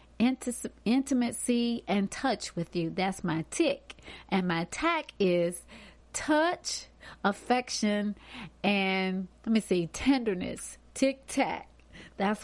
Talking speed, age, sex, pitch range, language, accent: 100 wpm, 30-49, female, 175-220 Hz, English, American